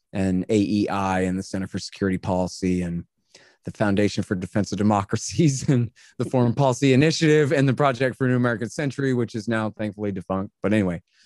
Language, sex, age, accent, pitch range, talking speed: English, male, 30-49, American, 115-145 Hz, 185 wpm